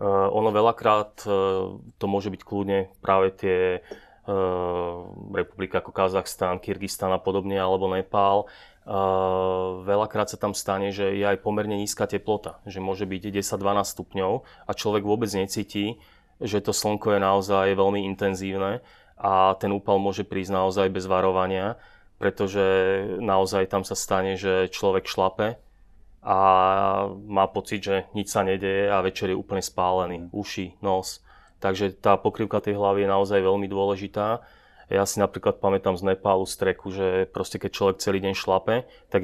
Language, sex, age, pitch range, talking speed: Slovak, male, 20-39, 95-100 Hz, 145 wpm